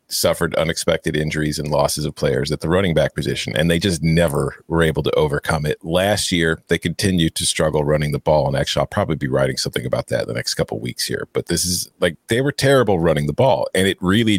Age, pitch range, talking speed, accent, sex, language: 40-59, 90-120 Hz, 245 wpm, American, male, English